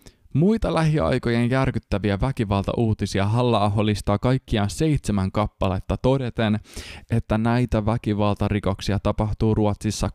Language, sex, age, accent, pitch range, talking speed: Finnish, male, 20-39, native, 100-130 Hz, 90 wpm